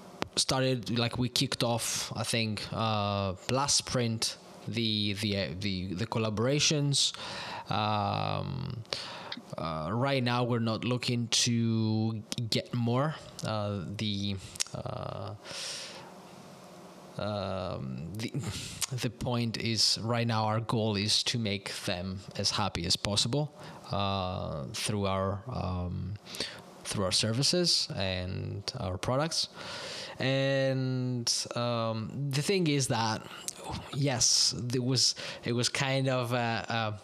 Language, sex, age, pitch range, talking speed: English, male, 20-39, 105-135 Hz, 110 wpm